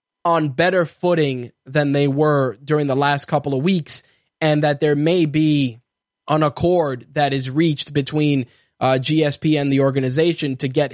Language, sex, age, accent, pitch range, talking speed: English, male, 20-39, American, 140-165 Hz, 165 wpm